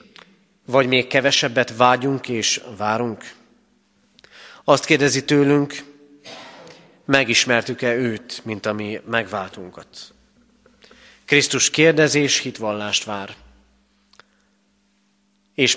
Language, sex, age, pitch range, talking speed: Hungarian, male, 30-49, 105-140 Hz, 75 wpm